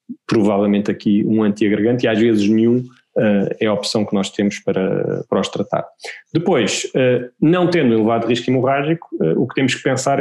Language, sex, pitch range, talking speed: Portuguese, male, 110-125 Hz, 175 wpm